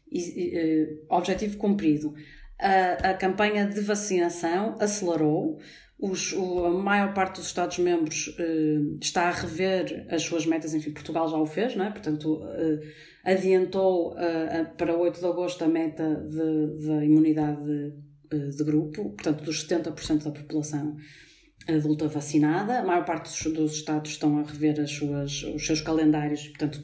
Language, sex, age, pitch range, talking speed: Portuguese, female, 30-49, 155-190 Hz, 160 wpm